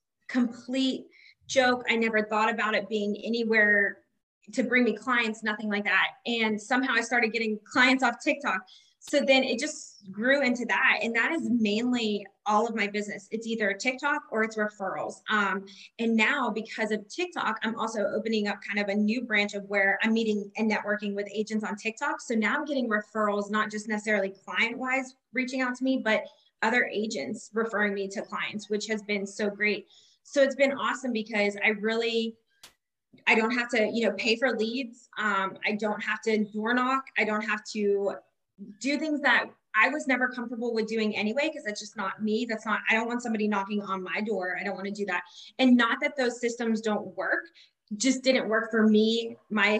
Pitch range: 205-245 Hz